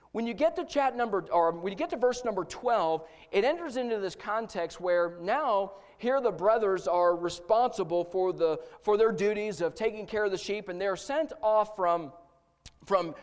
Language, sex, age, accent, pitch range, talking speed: English, male, 40-59, American, 185-235 Hz, 200 wpm